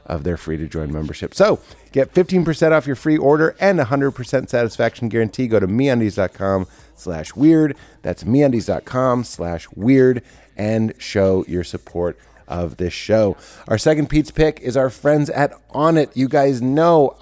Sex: male